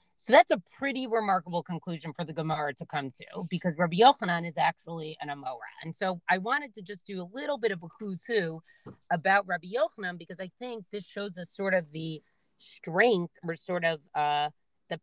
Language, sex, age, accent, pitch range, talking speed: English, female, 40-59, American, 160-190 Hz, 205 wpm